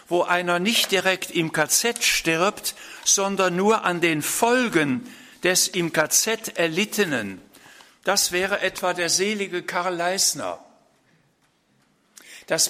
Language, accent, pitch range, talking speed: German, German, 155-205 Hz, 115 wpm